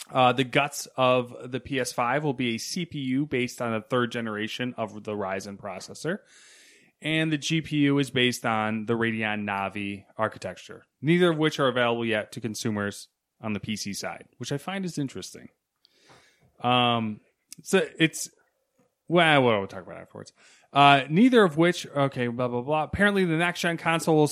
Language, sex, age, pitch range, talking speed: English, male, 30-49, 115-155 Hz, 170 wpm